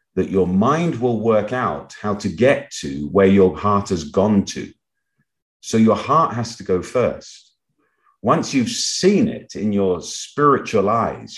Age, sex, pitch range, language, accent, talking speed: 40-59, male, 90-110 Hz, English, British, 165 wpm